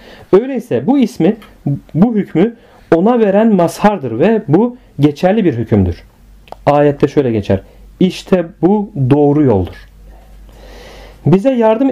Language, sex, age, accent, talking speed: Turkish, male, 40-59, native, 110 wpm